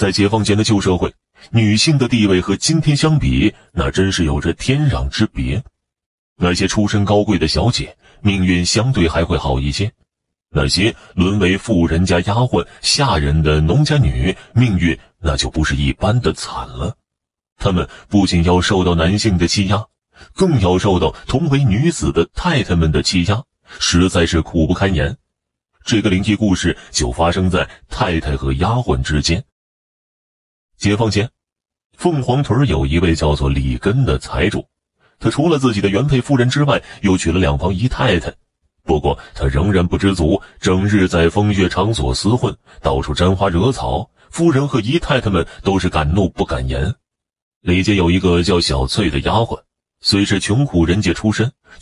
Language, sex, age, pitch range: Chinese, male, 30-49, 80-110 Hz